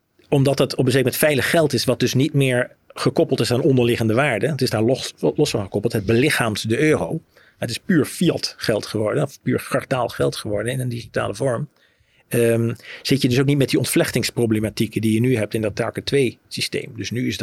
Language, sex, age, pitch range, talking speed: Dutch, male, 50-69, 115-135 Hz, 225 wpm